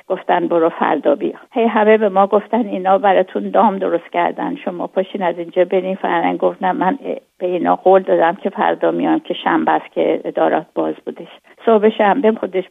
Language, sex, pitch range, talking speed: Persian, female, 175-210 Hz, 190 wpm